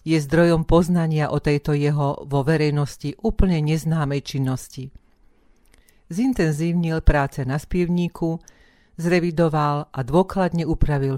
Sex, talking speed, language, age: female, 100 wpm, Slovak, 40-59